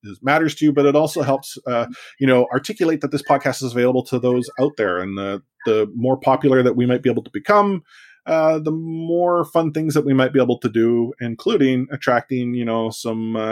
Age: 30-49